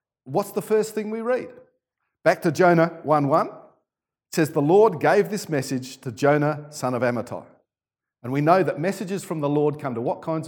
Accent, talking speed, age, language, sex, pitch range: Australian, 195 wpm, 50-69, English, male, 125-175 Hz